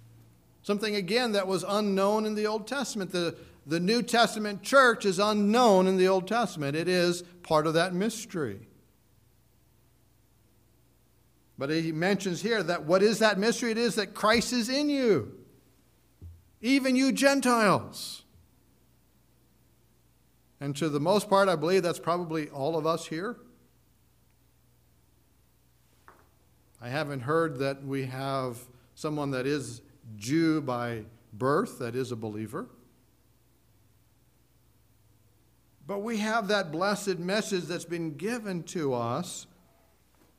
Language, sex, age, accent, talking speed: English, male, 50-69, American, 125 wpm